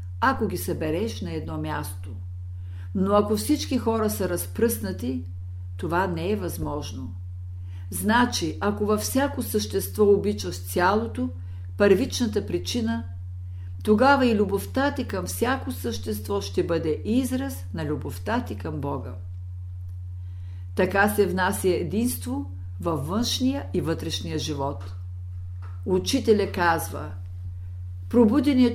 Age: 50-69